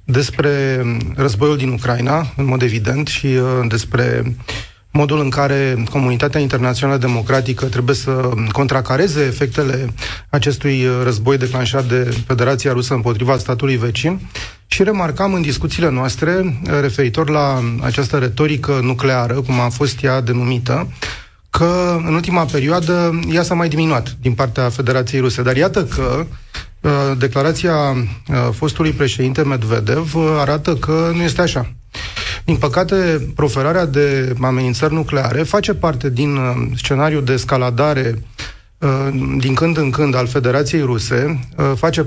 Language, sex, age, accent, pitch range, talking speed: Romanian, male, 30-49, native, 125-150 Hz, 125 wpm